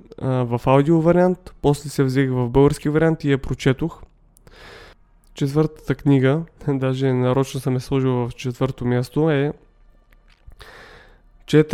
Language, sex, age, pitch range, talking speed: Bulgarian, male, 20-39, 130-155 Hz, 120 wpm